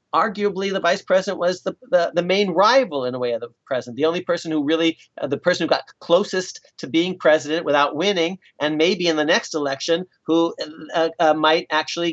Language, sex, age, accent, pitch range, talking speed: English, male, 50-69, American, 135-170 Hz, 215 wpm